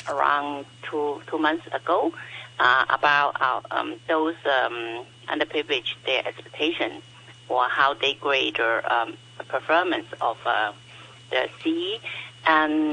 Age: 60-79